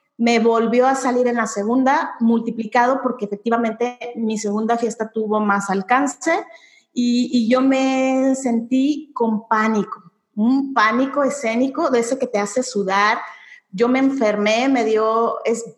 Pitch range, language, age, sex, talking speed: 220-270 Hz, Spanish, 30-49, female, 145 wpm